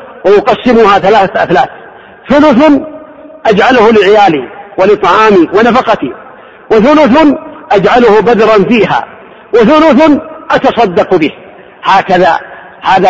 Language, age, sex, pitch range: Arabic, 50-69, male, 210-275 Hz